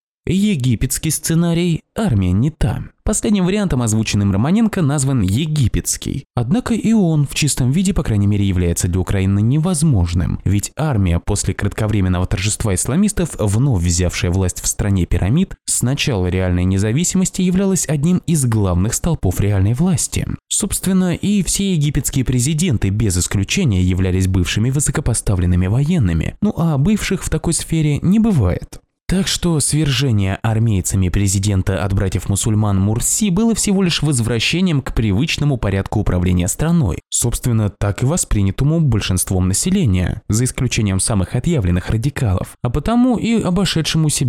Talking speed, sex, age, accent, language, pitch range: 135 wpm, male, 20-39, native, Russian, 95-160 Hz